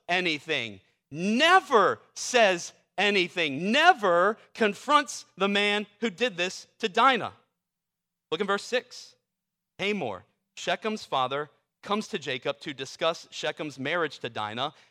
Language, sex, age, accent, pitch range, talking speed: English, male, 40-59, American, 140-200 Hz, 115 wpm